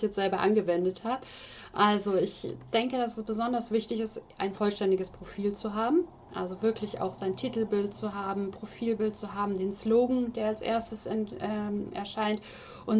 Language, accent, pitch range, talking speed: German, German, 195-230 Hz, 160 wpm